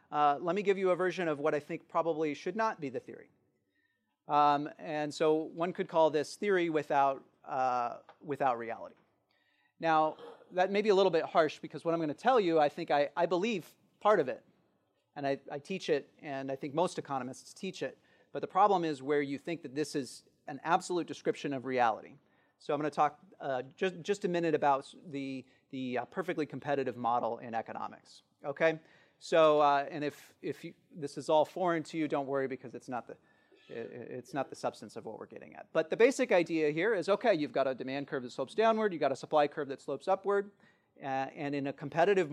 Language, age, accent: English, 30-49, American